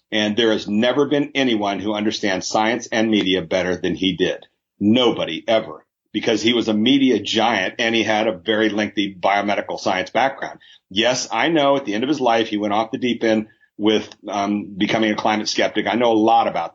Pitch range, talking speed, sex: 105-125 Hz, 210 wpm, male